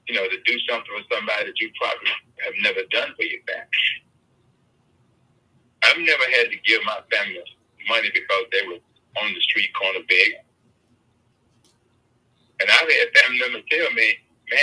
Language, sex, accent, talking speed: English, male, American, 165 wpm